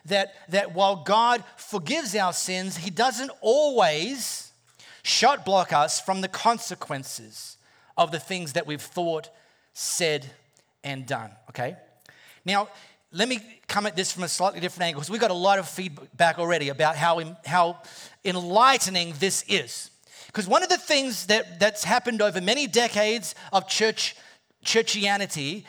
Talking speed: 150 wpm